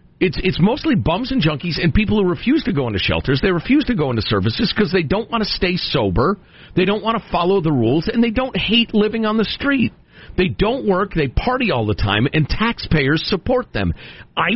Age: 50-69